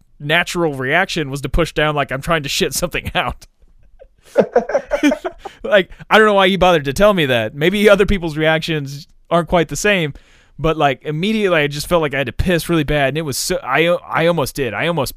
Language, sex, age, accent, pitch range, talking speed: English, male, 30-49, American, 125-185 Hz, 220 wpm